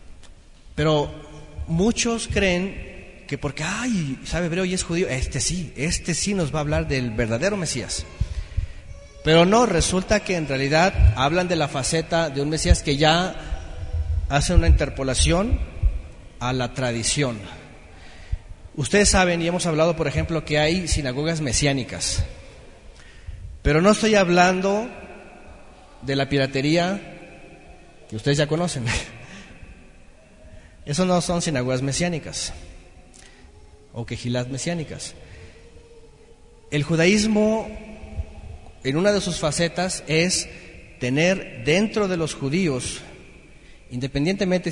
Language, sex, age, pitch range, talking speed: Spanish, male, 40-59, 105-170 Hz, 115 wpm